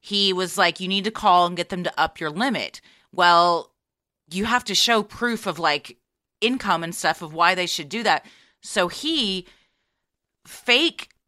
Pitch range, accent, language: 185-235 Hz, American, English